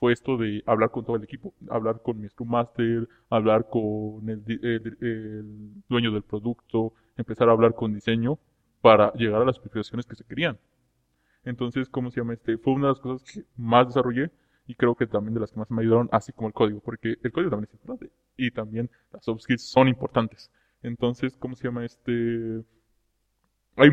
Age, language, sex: 20-39, Spanish, male